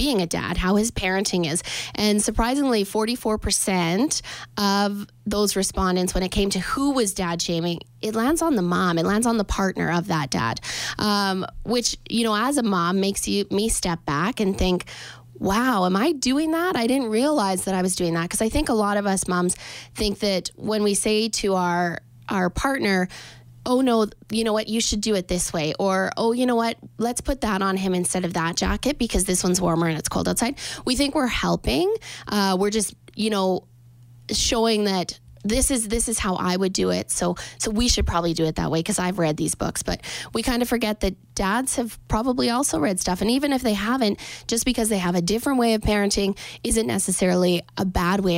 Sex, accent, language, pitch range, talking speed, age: female, American, English, 180-225 Hz, 220 wpm, 20-39